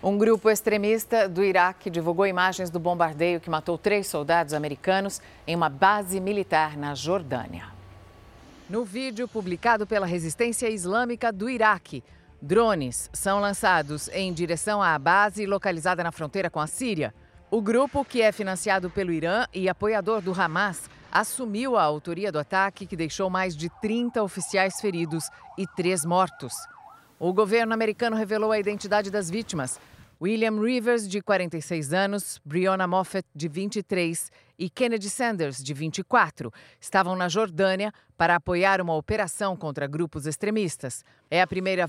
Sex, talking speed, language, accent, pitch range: female, 145 wpm, Portuguese, Brazilian, 165-205 Hz